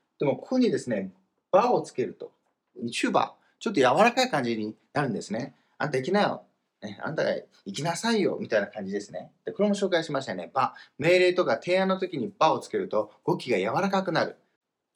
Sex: male